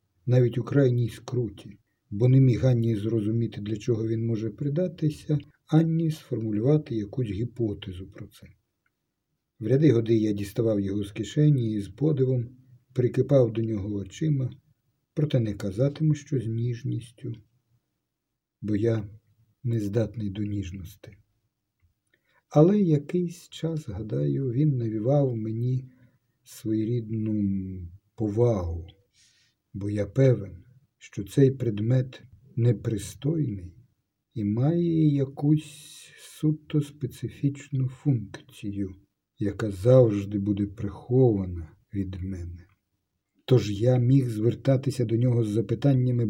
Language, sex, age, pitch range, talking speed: Ukrainian, male, 50-69, 105-135 Hz, 105 wpm